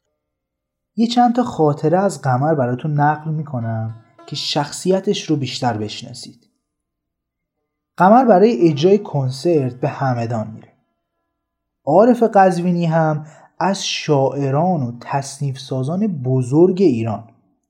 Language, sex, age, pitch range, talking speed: Persian, male, 30-49, 135-210 Hz, 110 wpm